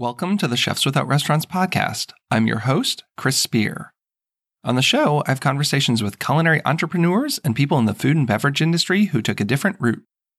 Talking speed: 195 wpm